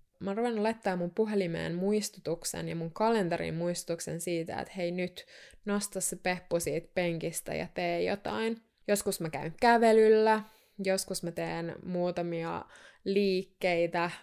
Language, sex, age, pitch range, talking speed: Finnish, female, 20-39, 170-190 Hz, 125 wpm